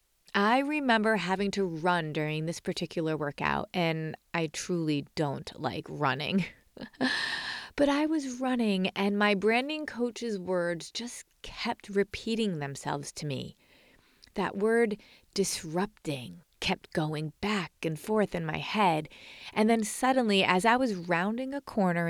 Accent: American